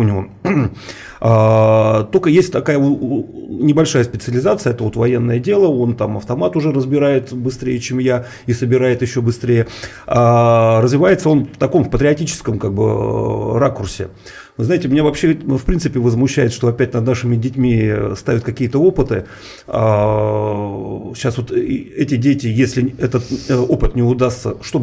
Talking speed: 135 wpm